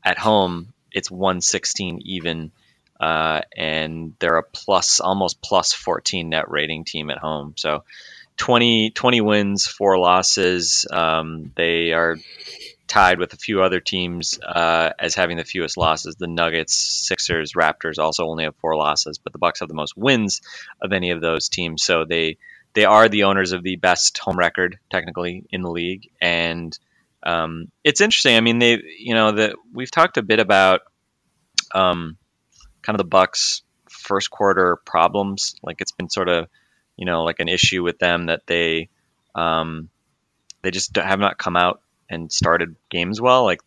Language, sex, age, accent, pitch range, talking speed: English, male, 30-49, American, 85-95 Hz, 170 wpm